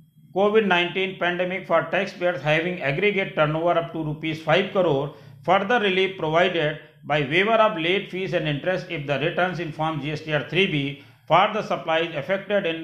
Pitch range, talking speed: 150-190 Hz, 180 wpm